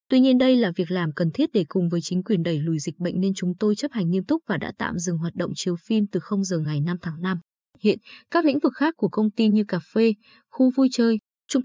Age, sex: 20-39, female